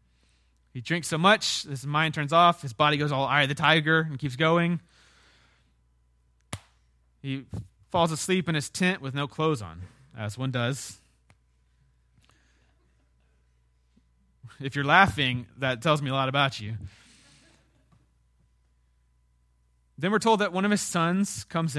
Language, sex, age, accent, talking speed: English, male, 20-39, American, 140 wpm